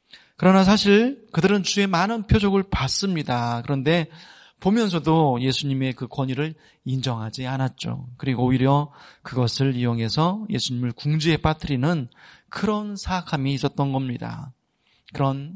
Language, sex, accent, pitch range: Korean, male, native, 130-175 Hz